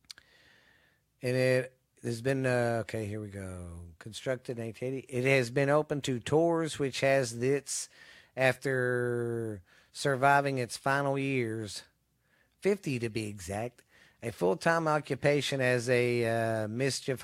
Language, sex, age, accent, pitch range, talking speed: English, male, 40-59, American, 120-140 Hz, 130 wpm